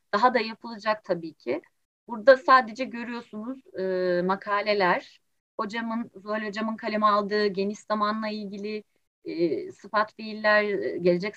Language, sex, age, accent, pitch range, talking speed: Turkish, female, 30-49, native, 205-255 Hz, 115 wpm